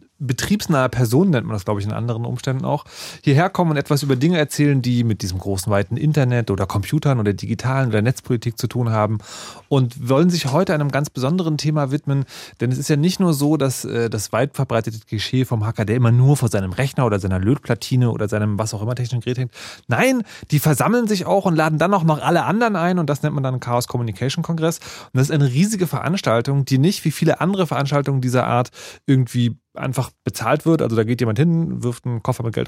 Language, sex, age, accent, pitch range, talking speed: German, male, 30-49, German, 115-155 Hz, 225 wpm